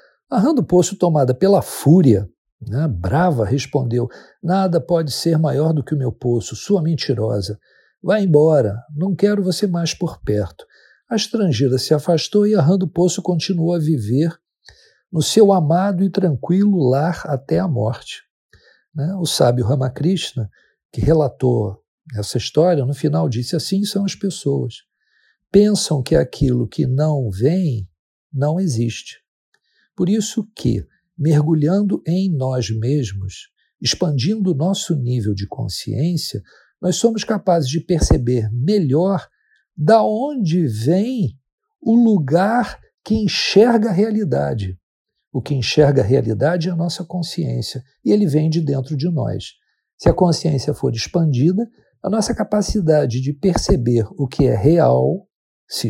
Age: 60-79